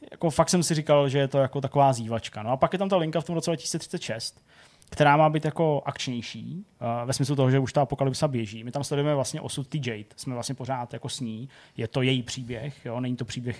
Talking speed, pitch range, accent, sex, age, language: 245 wpm, 125-145 Hz, native, male, 20-39, Czech